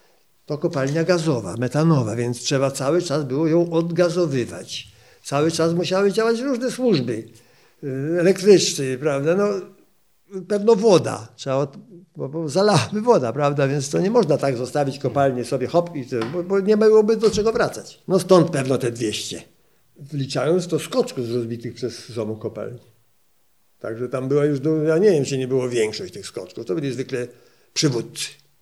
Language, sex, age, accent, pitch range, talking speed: Polish, male, 50-69, native, 120-170 Hz, 160 wpm